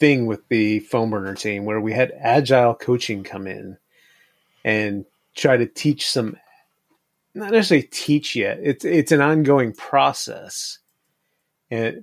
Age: 30-49